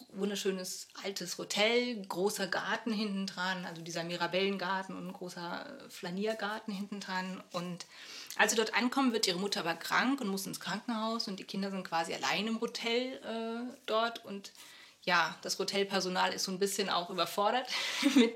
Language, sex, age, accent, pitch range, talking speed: German, female, 30-49, German, 185-230 Hz, 165 wpm